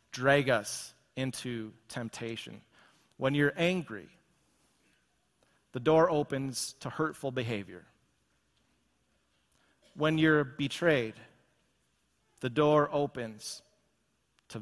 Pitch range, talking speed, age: 110-155 Hz, 80 wpm, 40-59